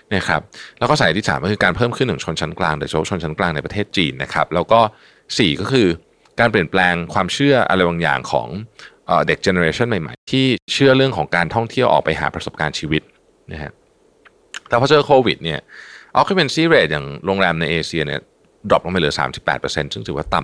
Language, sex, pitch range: Thai, male, 80-130 Hz